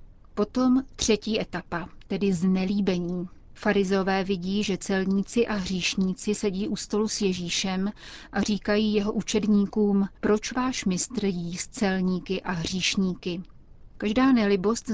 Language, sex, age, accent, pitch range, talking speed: Czech, female, 30-49, native, 190-215 Hz, 120 wpm